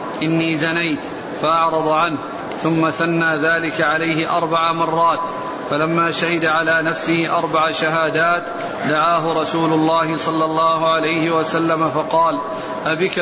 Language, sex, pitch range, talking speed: Arabic, male, 160-165 Hz, 115 wpm